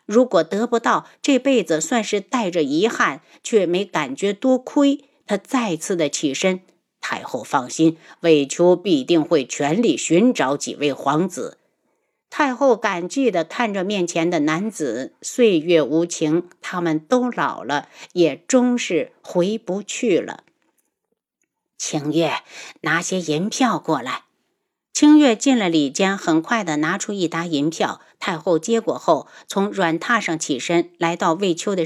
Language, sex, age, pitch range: Chinese, female, 50-69, 165-245 Hz